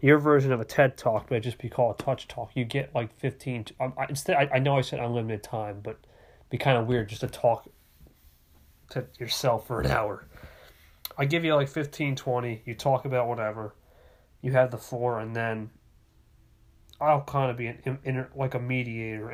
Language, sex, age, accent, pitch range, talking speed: English, male, 30-49, American, 110-135 Hz, 190 wpm